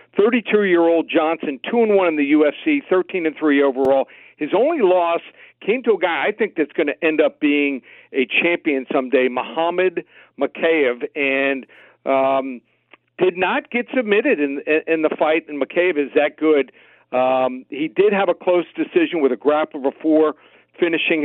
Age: 50-69